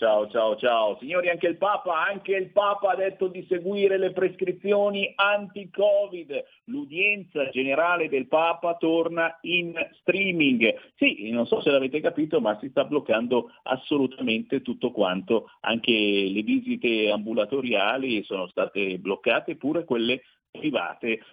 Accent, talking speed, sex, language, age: native, 130 wpm, male, Italian, 50-69